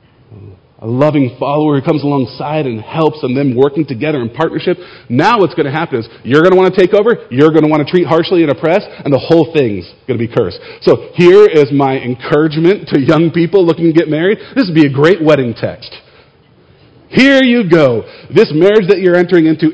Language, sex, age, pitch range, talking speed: English, male, 40-59, 110-155 Hz, 220 wpm